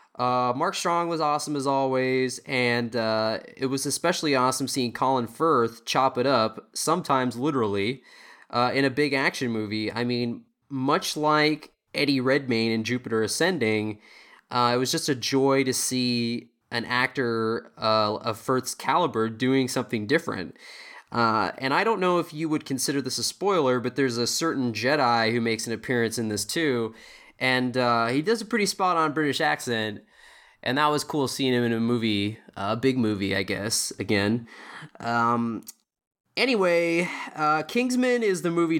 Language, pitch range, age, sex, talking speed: English, 115-145 Hz, 20-39, male, 165 wpm